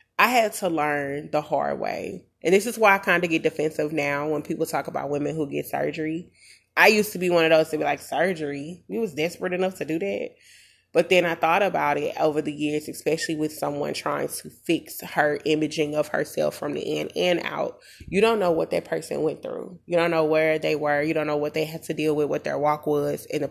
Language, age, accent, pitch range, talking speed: English, 20-39, American, 155-195 Hz, 245 wpm